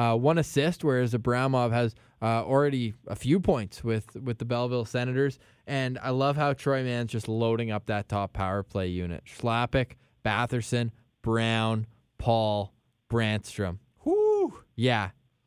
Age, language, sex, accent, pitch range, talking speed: 20-39, English, male, American, 120-150 Hz, 145 wpm